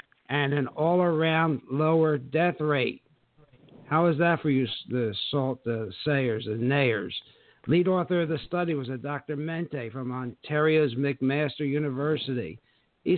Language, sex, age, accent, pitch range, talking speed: English, male, 60-79, American, 125-155 Hz, 145 wpm